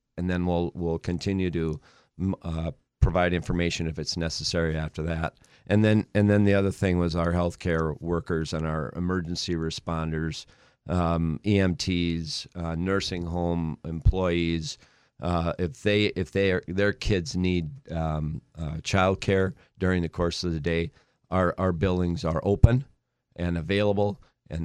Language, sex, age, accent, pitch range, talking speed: English, male, 40-59, American, 80-95 Hz, 150 wpm